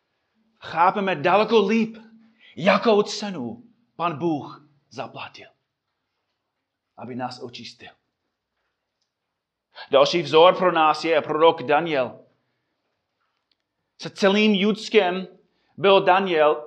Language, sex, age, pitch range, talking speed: Czech, male, 30-49, 150-220 Hz, 85 wpm